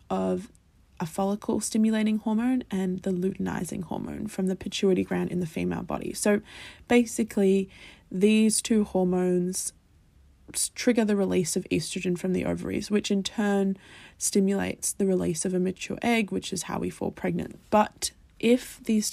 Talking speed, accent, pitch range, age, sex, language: 150 wpm, Australian, 180-210 Hz, 20-39, female, English